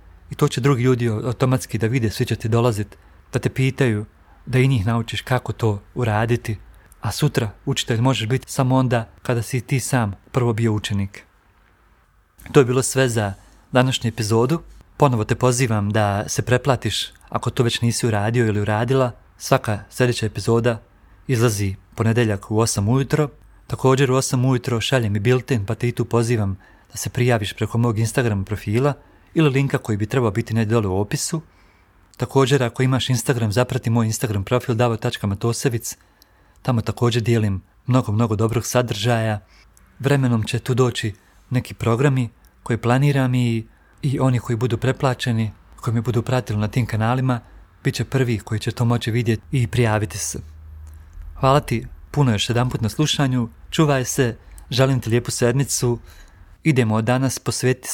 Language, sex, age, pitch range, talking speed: Croatian, male, 40-59, 105-130 Hz, 160 wpm